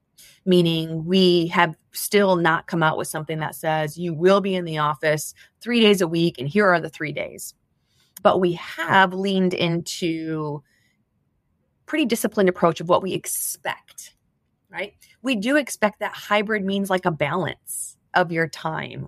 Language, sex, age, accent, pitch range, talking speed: English, female, 30-49, American, 160-200 Hz, 165 wpm